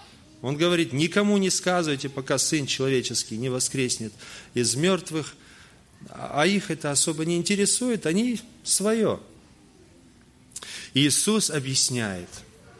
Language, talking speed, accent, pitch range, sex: Russian, 105 wpm, native, 125-175 Hz, male